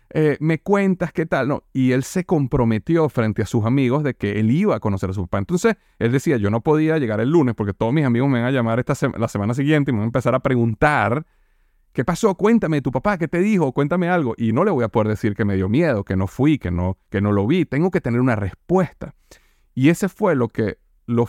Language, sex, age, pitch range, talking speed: Spanish, male, 30-49, 105-145 Hz, 260 wpm